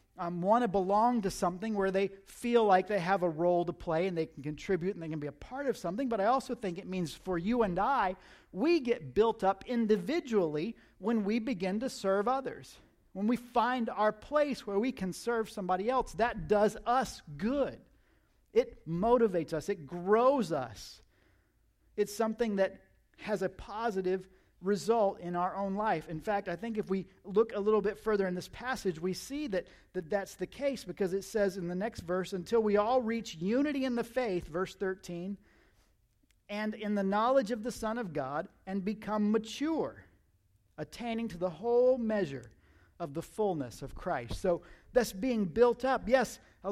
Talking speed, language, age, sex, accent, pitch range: 190 wpm, English, 40-59, male, American, 180-230 Hz